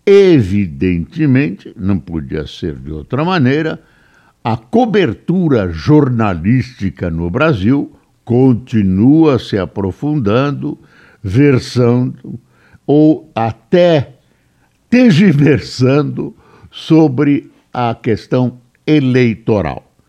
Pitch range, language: 95-135 Hz, Portuguese